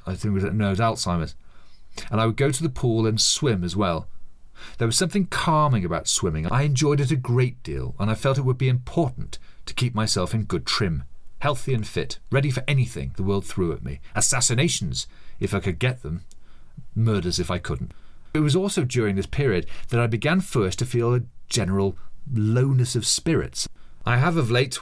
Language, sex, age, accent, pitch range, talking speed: English, male, 40-59, British, 90-130 Hz, 210 wpm